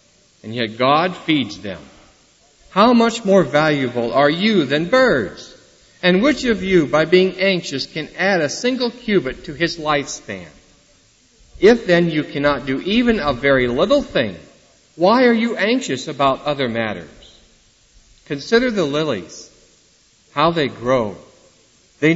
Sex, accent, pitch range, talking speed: male, American, 140-205 Hz, 140 wpm